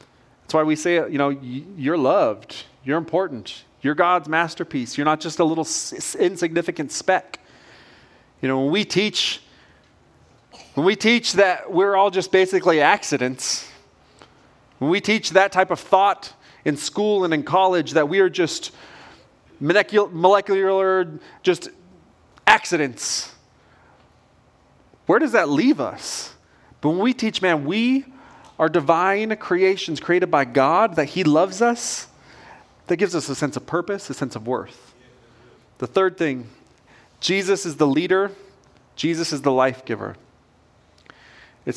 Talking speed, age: 140 wpm, 30-49